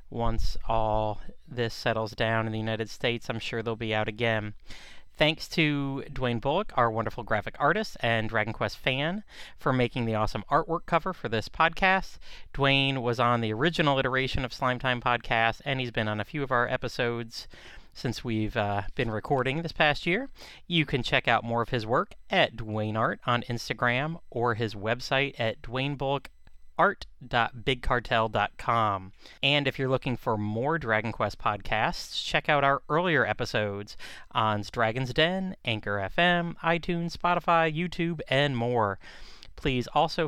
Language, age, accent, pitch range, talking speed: English, 30-49, American, 115-155 Hz, 160 wpm